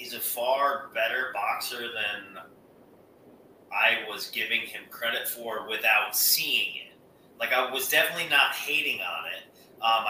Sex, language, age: male, English, 30-49